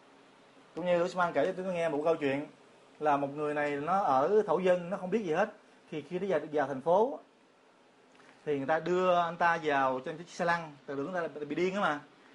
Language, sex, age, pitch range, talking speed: Vietnamese, male, 30-49, 165-225 Hz, 240 wpm